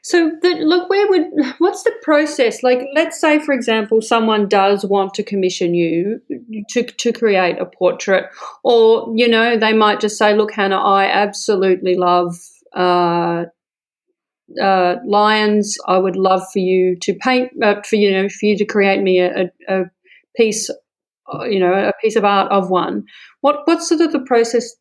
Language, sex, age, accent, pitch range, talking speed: English, female, 40-59, Australian, 195-255 Hz, 175 wpm